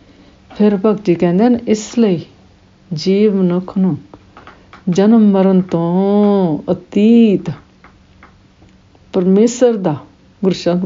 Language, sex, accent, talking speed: English, female, Indian, 75 wpm